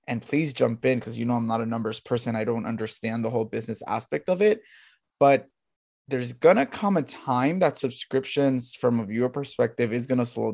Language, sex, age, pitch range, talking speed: English, male, 20-39, 120-150 Hz, 215 wpm